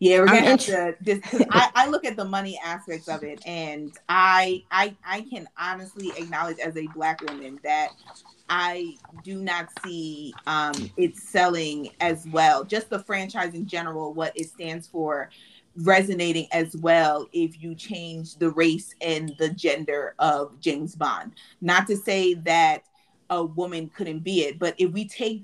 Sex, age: female, 30-49